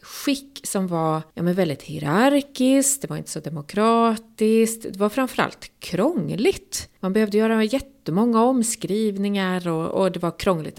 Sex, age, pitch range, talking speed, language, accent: female, 30-49, 155-215 Hz, 145 wpm, Swedish, native